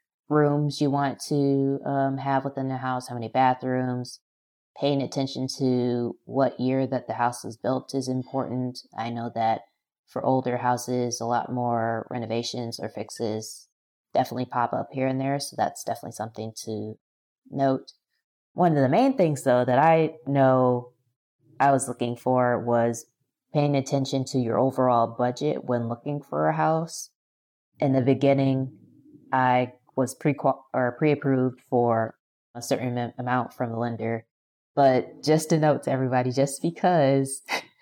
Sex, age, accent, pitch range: female, 20-39, American, 120-135 Hz